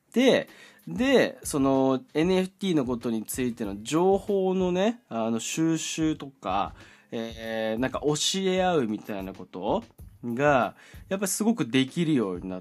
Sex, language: male, Japanese